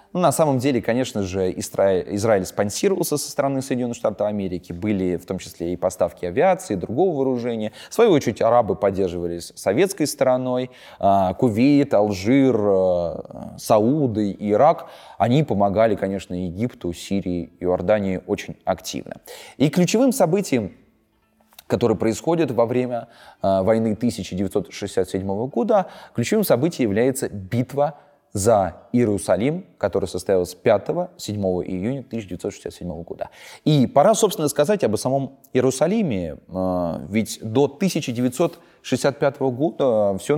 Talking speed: 110 wpm